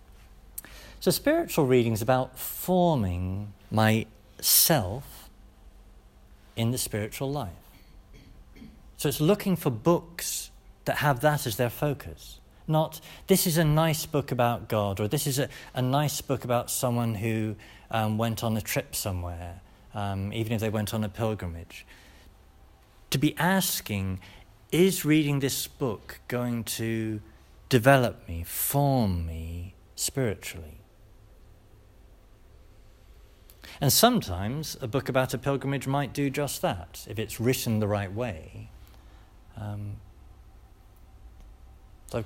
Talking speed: 125 wpm